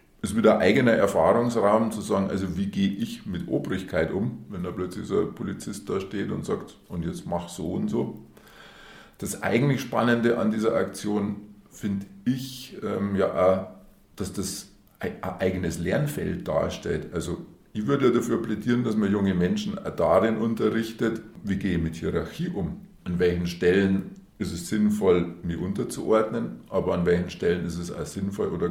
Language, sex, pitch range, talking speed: German, male, 90-115 Hz, 170 wpm